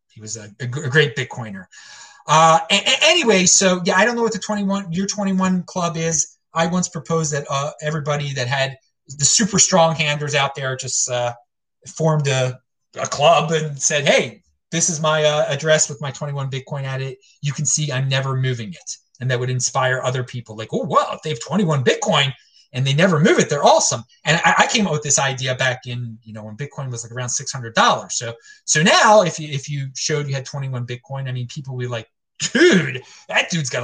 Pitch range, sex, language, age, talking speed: 130-185 Hz, male, English, 30-49, 225 wpm